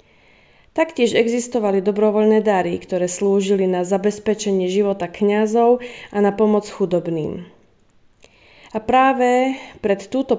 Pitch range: 190-235 Hz